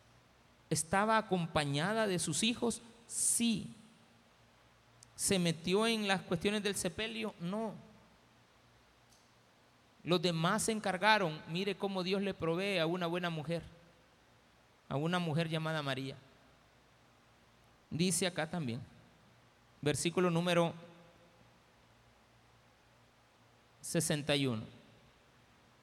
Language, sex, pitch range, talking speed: Spanish, male, 145-195 Hz, 90 wpm